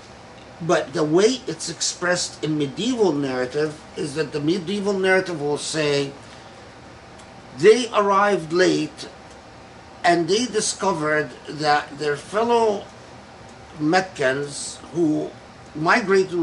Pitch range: 145-195 Hz